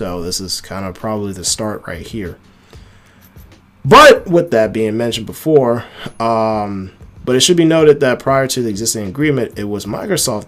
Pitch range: 95-115 Hz